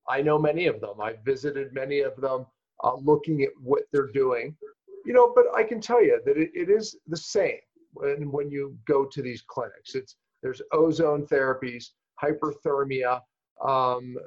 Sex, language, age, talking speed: male, English, 40-59, 175 wpm